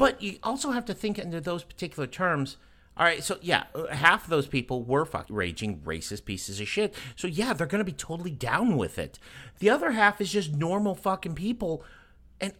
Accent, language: American, English